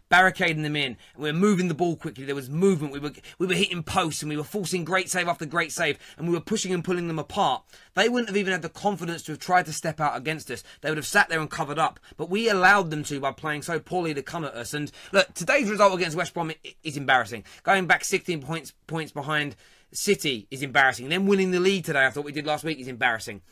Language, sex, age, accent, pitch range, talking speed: English, male, 30-49, British, 145-185 Hz, 260 wpm